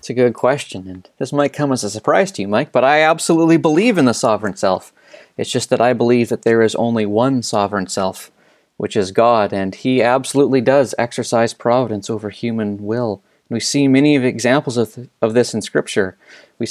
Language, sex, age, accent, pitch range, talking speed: English, male, 30-49, American, 120-150 Hz, 210 wpm